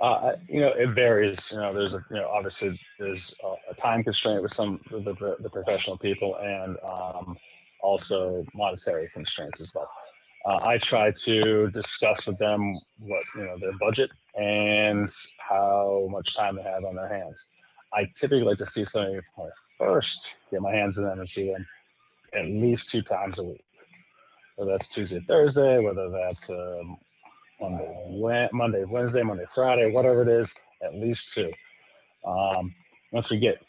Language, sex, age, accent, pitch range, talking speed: English, male, 20-39, American, 95-115 Hz, 170 wpm